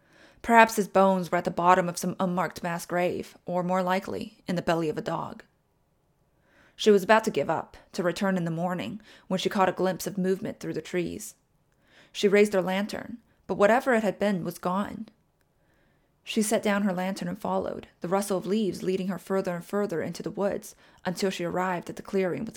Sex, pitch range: female, 175-210 Hz